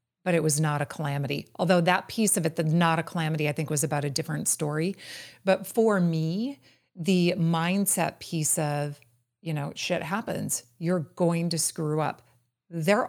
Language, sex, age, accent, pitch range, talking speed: English, female, 40-59, American, 150-180 Hz, 180 wpm